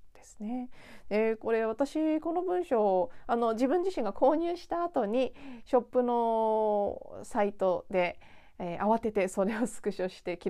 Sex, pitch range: female, 185-260 Hz